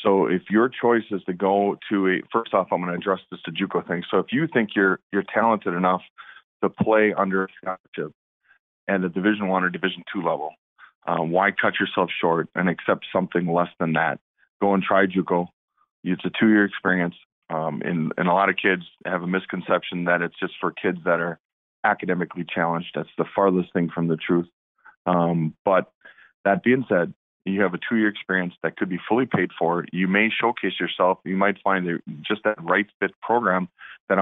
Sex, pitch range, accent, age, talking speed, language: male, 90-100 Hz, American, 40-59, 205 wpm, English